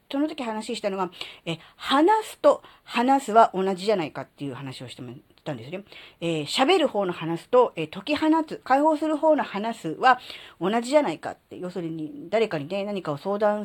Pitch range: 160-265 Hz